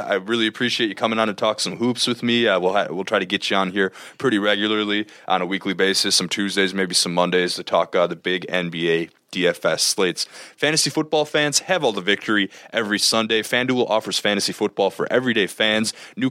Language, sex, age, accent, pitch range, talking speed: English, male, 20-39, American, 95-120 Hz, 215 wpm